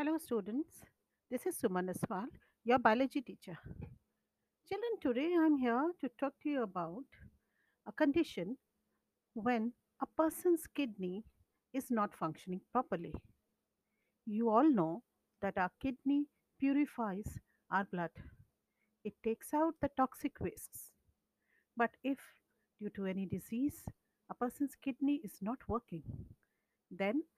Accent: Indian